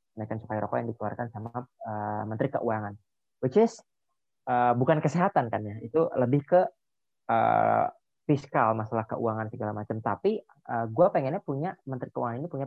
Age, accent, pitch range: 20-39, native, 110-140 Hz